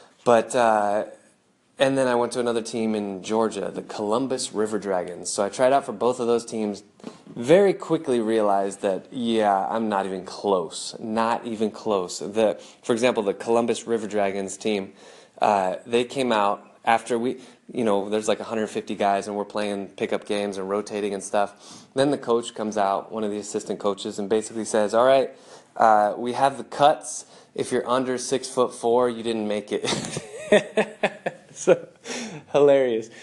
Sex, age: male, 20-39